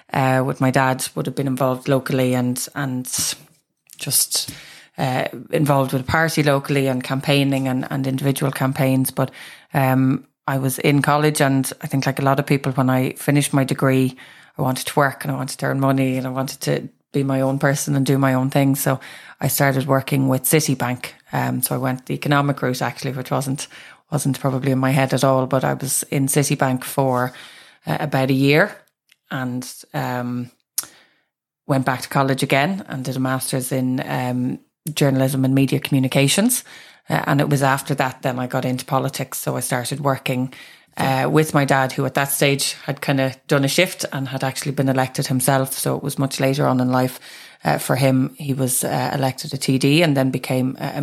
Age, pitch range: 20-39, 130-140 Hz